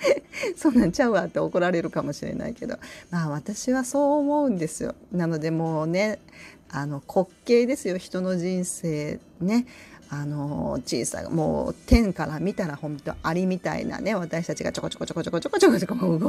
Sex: female